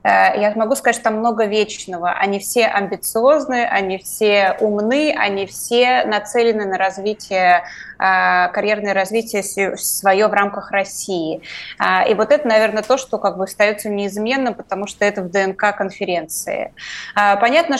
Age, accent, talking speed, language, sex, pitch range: 20-39, native, 140 wpm, Russian, female, 195-220 Hz